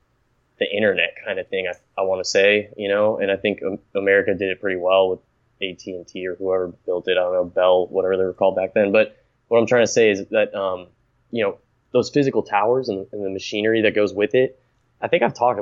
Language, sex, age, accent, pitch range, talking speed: English, male, 20-39, American, 95-120 Hz, 240 wpm